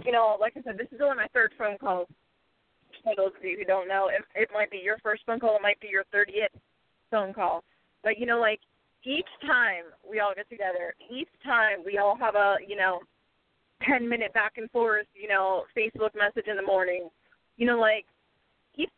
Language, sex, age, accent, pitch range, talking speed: English, female, 30-49, American, 195-245 Hz, 210 wpm